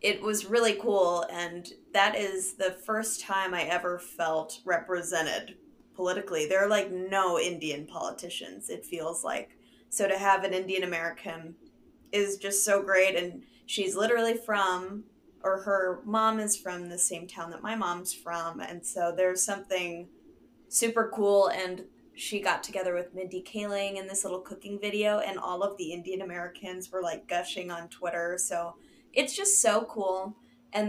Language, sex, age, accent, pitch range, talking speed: English, female, 20-39, American, 175-205 Hz, 165 wpm